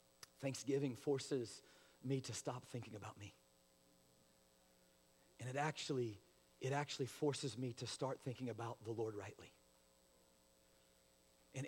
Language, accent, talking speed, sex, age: English, American, 120 wpm, male, 40-59